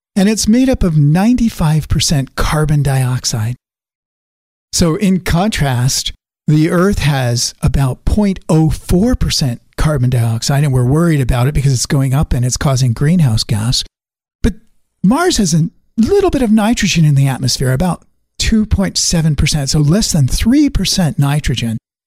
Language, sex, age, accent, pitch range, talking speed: English, male, 50-69, American, 130-185 Hz, 135 wpm